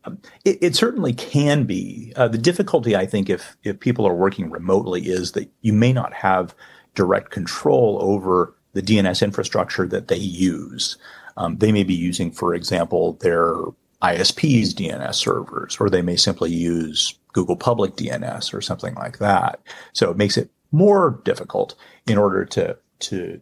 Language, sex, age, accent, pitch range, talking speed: English, male, 40-59, American, 95-120 Hz, 165 wpm